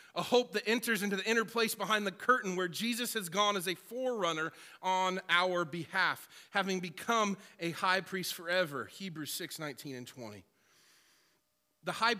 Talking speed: 165 wpm